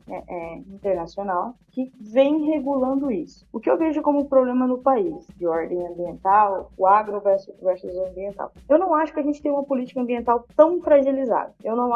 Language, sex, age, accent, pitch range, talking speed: Portuguese, female, 20-39, Brazilian, 185-260 Hz, 185 wpm